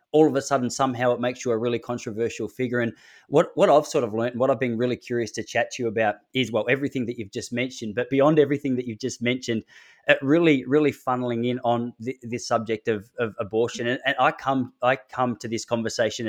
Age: 20-39